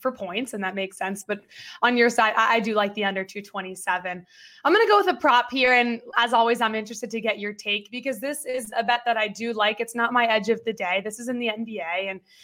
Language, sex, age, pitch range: English, female, 20-39, 200-240 Hz